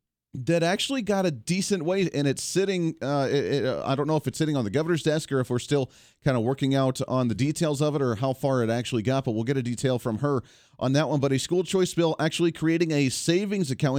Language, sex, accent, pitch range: English, male, American, 125-155 Hz